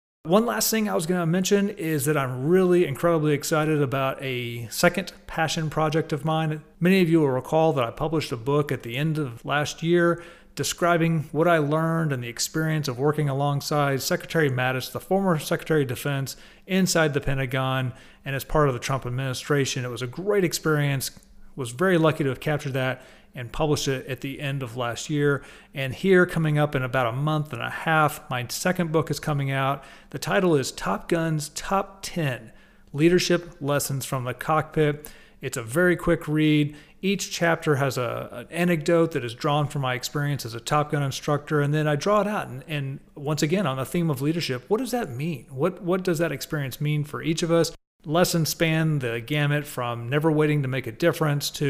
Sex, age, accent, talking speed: male, 40-59, American, 205 wpm